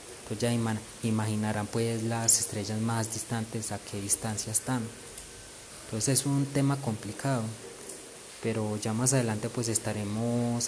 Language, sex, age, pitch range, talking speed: Spanish, male, 20-39, 110-125 Hz, 125 wpm